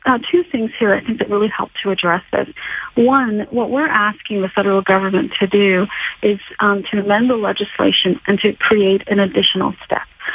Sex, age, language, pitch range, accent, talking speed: female, 40-59, English, 195-220 Hz, American, 190 wpm